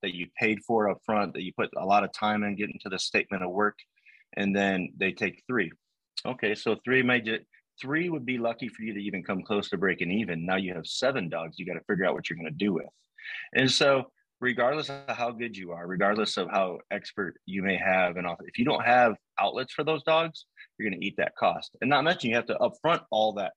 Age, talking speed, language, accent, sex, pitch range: 30-49, 240 wpm, English, American, male, 95-115 Hz